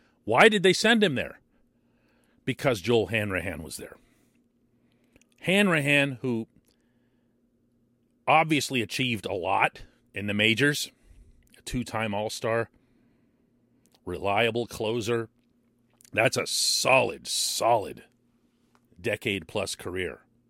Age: 40-59